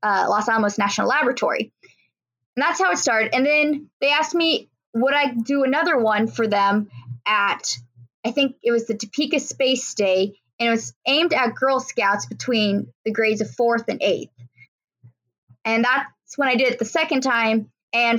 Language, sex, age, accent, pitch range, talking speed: English, female, 20-39, American, 210-280 Hz, 180 wpm